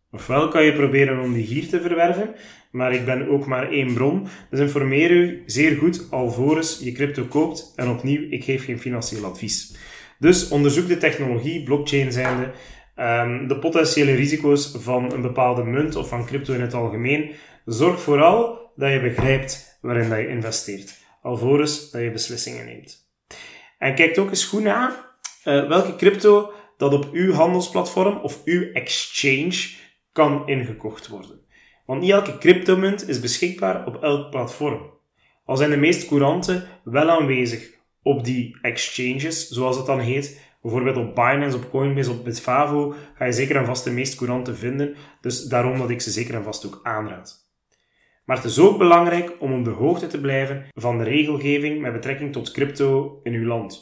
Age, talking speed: 30-49, 170 wpm